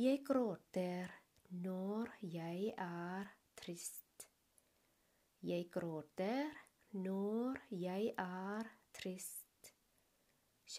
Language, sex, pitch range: Thai, female, 180-225 Hz